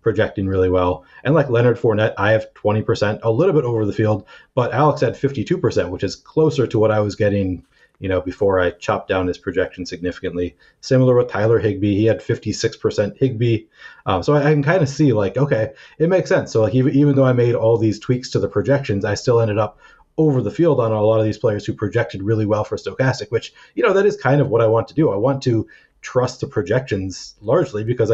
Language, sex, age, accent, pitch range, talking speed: English, male, 30-49, American, 100-130 Hz, 240 wpm